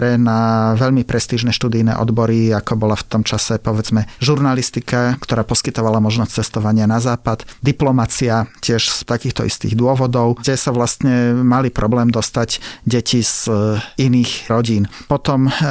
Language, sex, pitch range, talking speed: Slovak, male, 115-125 Hz, 135 wpm